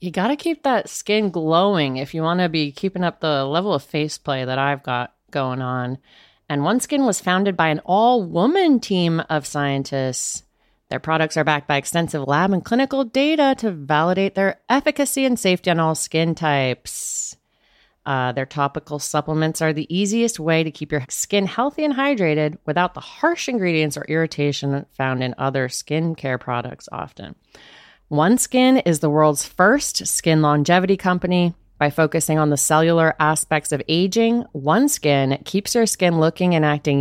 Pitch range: 145-195 Hz